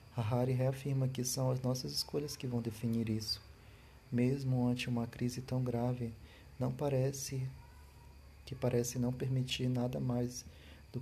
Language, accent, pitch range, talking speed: Portuguese, Brazilian, 115-130 Hz, 140 wpm